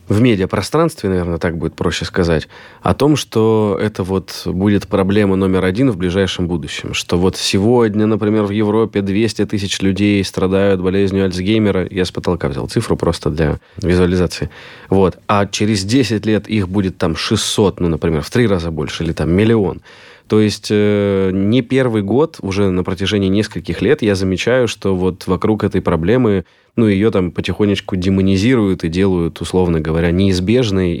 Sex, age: male, 20-39